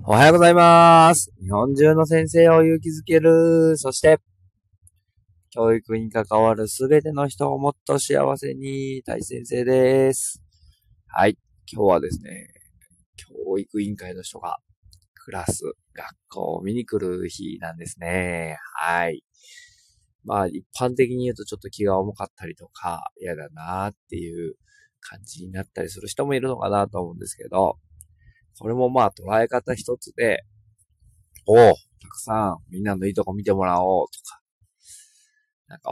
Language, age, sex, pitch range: Japanese, 20-39, male, 95-135 Hz